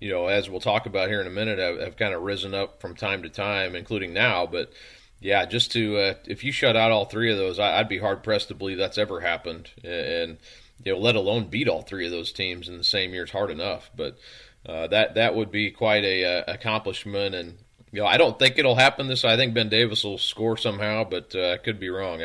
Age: 40-59